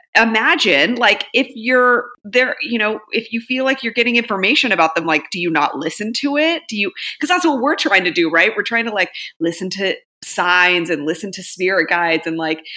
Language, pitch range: English, 155-205 Hz